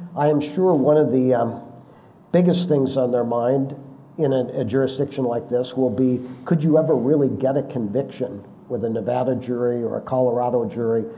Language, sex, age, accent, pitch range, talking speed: English, male, 50-69, American, 120-145 Hz, 190 wpm